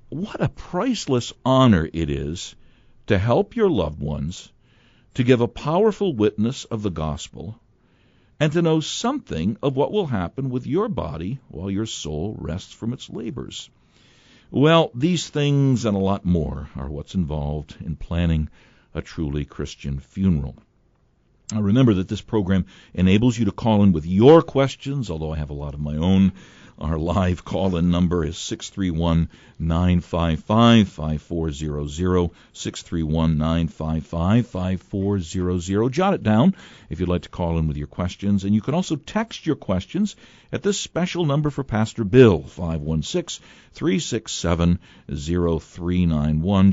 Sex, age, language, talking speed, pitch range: male, 60-79, English, 140 wpm, 80-120 Hz